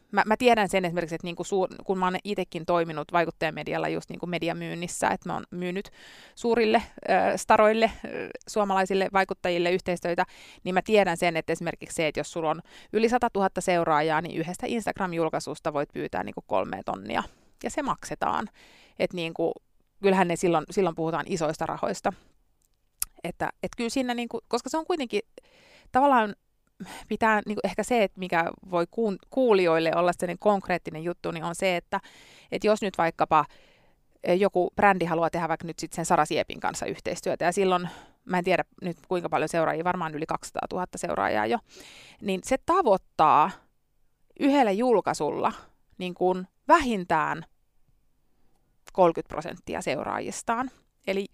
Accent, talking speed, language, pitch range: native, 150 wpm, Finnish, 170-215 Hz